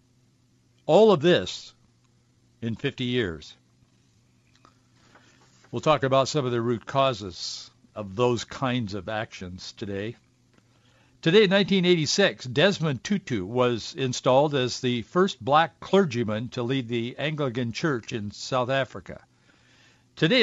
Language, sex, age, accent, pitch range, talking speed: English, male, 60-79, American, 120-165 Hz, 120 wpm